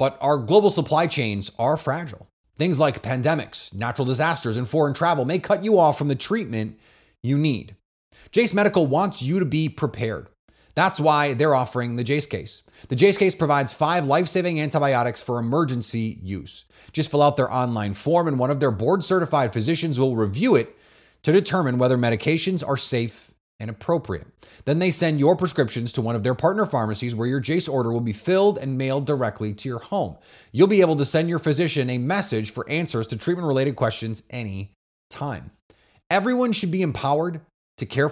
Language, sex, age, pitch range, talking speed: English, male, 30-49, 110-160 Hz, 185 wpm